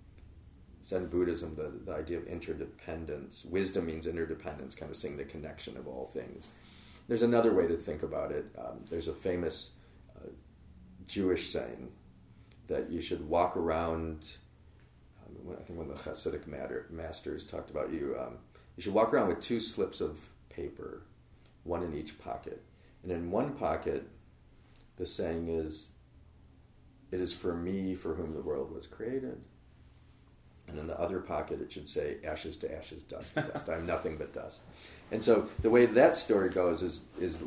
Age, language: 40-59, English